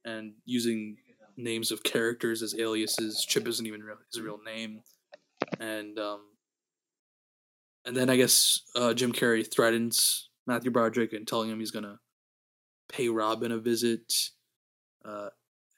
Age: 20-39